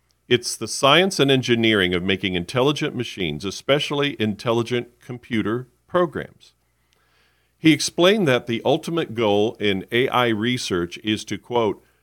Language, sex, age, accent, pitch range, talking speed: English, male, 50-69, American, 95-130 Hz, 125 wpm